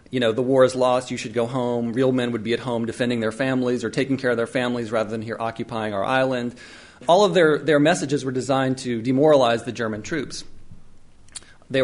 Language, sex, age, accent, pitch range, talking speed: English, male, 40-59, American, 120-165 Hz, 225 wpm